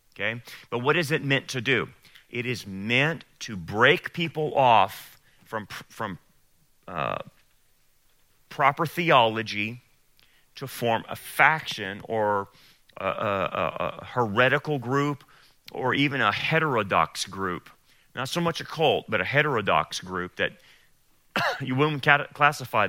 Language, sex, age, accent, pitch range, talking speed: English, male, 40-59, American, 110-145 Hz, 125 wpm